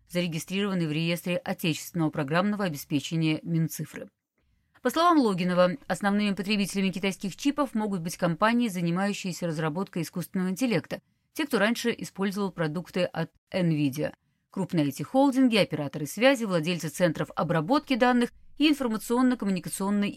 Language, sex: Russian, female